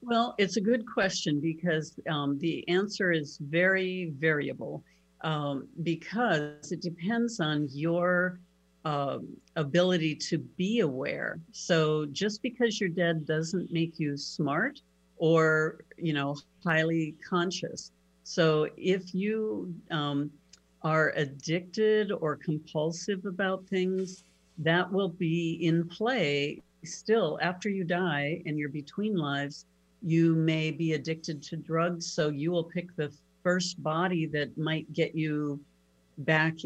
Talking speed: 130 wpm